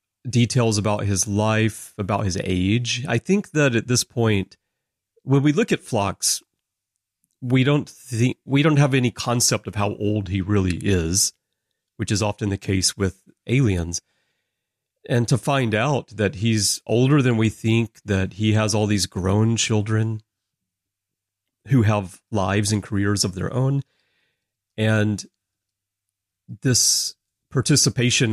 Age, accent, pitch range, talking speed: 40-59, American, 95-115 Hz, 140 wpm